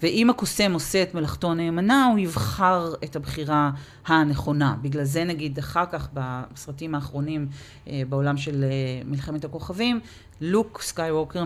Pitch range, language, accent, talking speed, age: 140-180 Hz, Hebrew, native, 125 wpm, 40-59